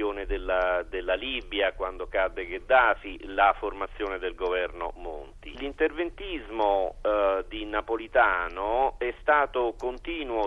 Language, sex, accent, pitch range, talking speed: Italian, male, native, 110-180 Hz, 95 wpm